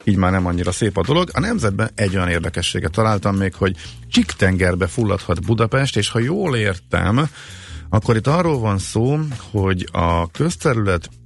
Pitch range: 85-105 Hz